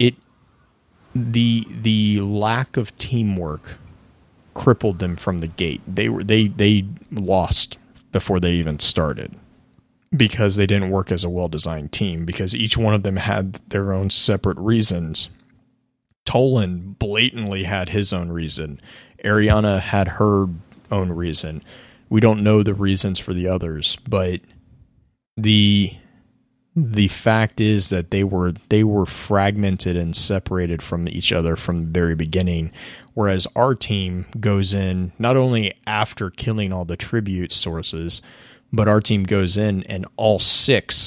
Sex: male